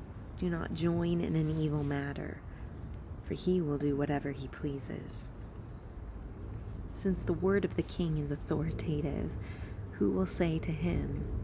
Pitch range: 100-150 Hz